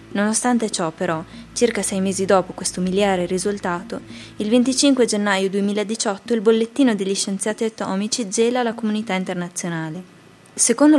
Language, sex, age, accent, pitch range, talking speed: Italian, female, 20-39, native, 185-220 Hz, 130 wpm